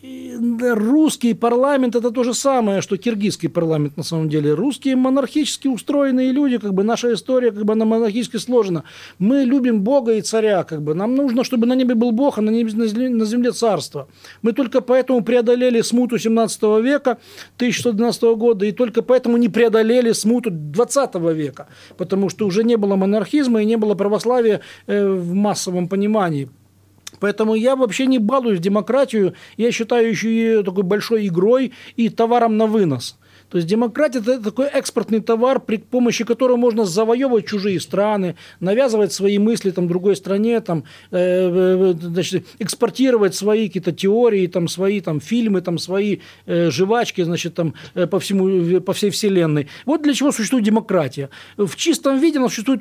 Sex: male